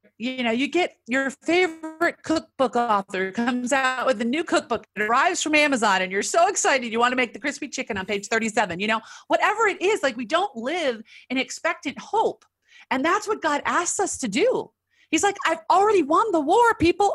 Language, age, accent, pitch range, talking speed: English, 40-59, American, 200-315 Hz, 210 wpm